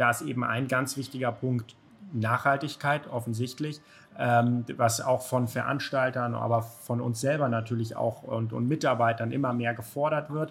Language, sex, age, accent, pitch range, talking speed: German, male, 30-49, German, 120-140 Hz, 155 wpm